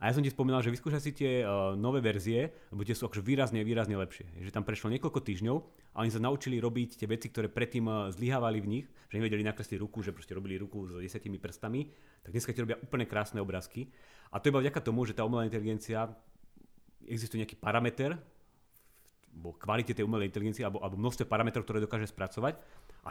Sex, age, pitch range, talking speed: male, 30-49, 100-125 Hz, 210 wpm